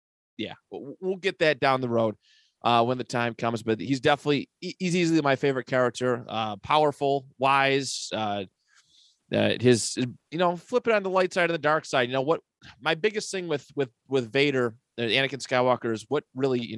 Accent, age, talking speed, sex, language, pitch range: American, 30-49, 195 wpm, male, English, 115-155 Hz